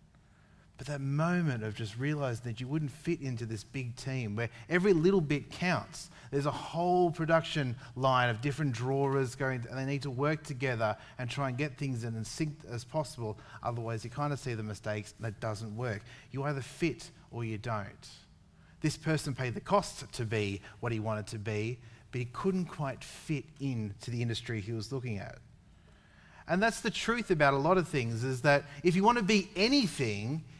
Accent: Australian